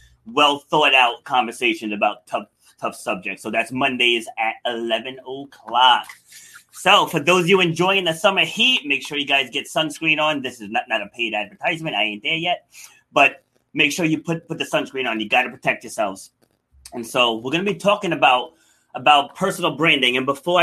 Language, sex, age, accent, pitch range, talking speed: English, male, 30-49, American, 130-165 Hz, 190 wpm